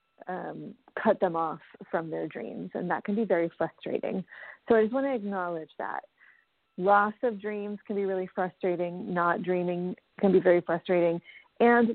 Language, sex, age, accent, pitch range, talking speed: English, female, 30-49, American, 175-215 Hz, 170 wpm